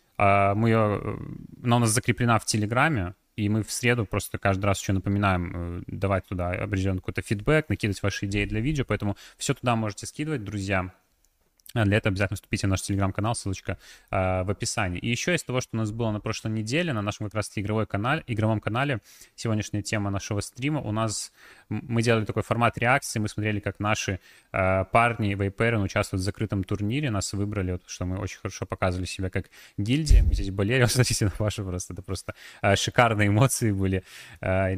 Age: 20-39